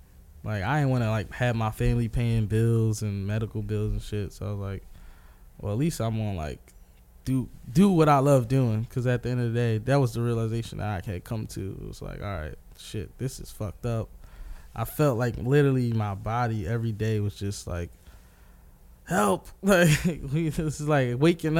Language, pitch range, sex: English, 105-130 Hz, male